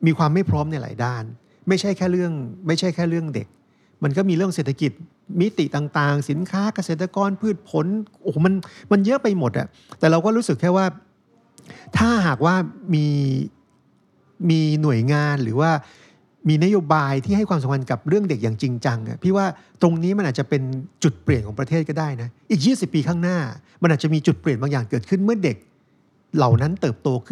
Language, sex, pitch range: Thai, male, 140-185 Hz